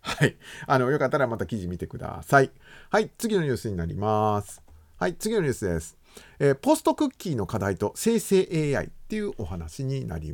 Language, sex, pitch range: Japanese, male, 110-180 Hz